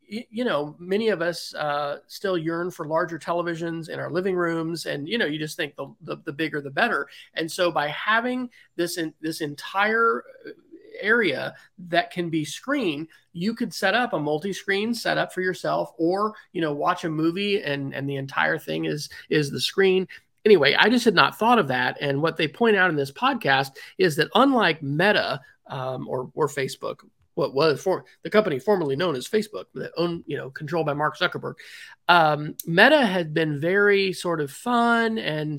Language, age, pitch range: English, 30-49, 145-200 Hz